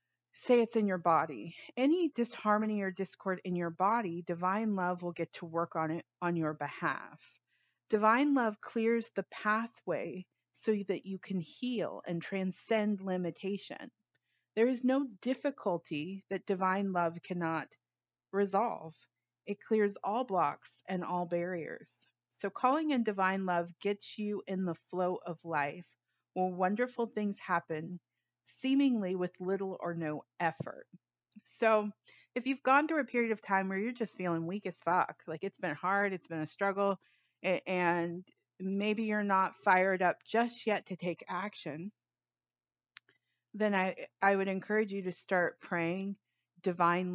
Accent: American